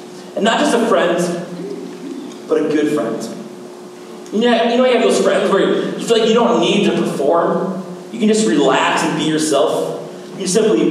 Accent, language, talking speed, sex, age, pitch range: American, English, 180 wpm, male, 40-59, 155-225 Hz